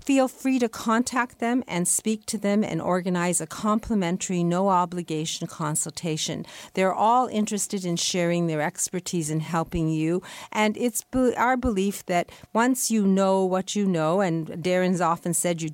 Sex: female